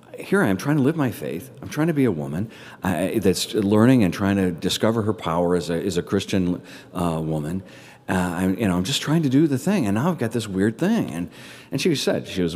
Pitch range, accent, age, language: 90-115 Hz, American, 40-59, English